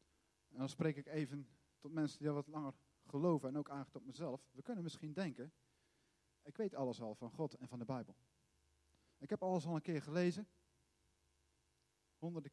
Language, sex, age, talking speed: Dutch, male, 40-59, 185 wpm